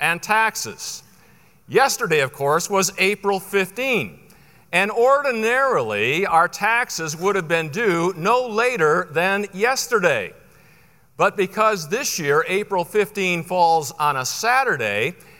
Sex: male